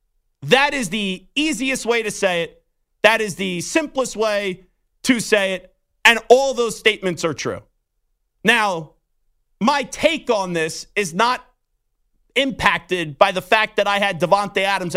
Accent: American